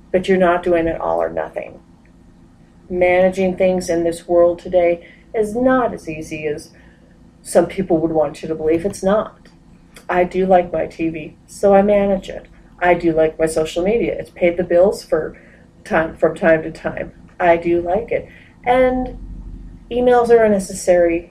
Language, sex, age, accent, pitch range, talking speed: English, female, 40-59, American, 160-195 Hz, 175 wpm